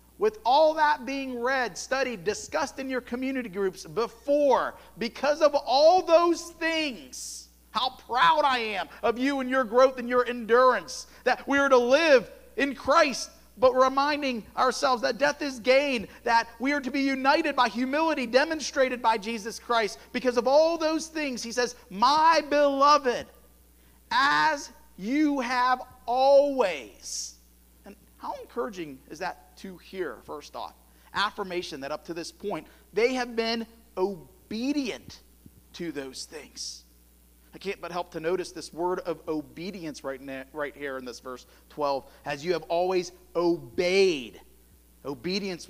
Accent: American